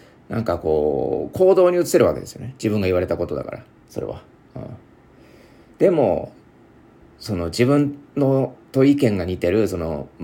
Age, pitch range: 40-59, 90-125 Hz